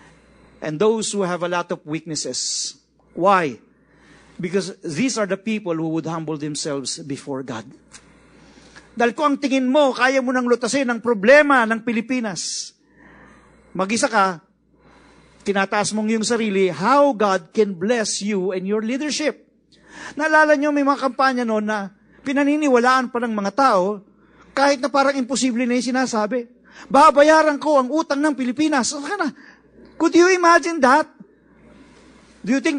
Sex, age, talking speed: male, 50-69, 145 wpm